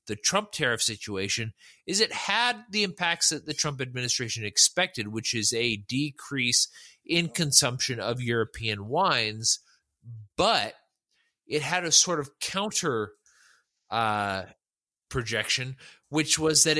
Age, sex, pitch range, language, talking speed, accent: 30-49, male, 110-145 Hz, English, 125 wpm, American